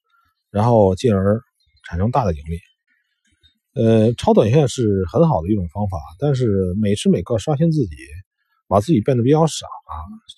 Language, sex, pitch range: Chinese, male, 95-155 Hz